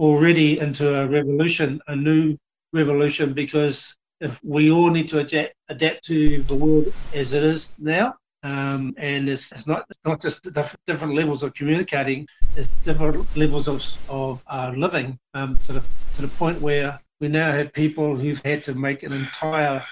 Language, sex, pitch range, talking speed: English, male, 145-160 Hz, 180 wpm